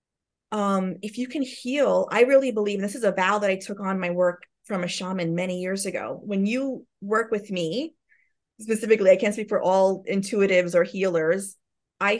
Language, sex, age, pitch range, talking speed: English, female, 30-49, 195-265 Hz, 190 wpm